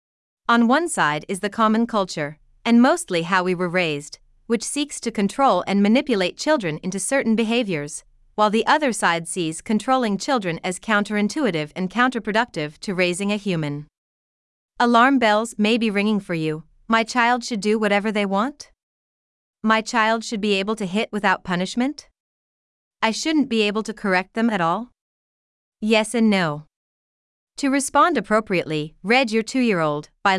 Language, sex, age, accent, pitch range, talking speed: English, female, 30-49, American, 180-235 Hz, 160 wpm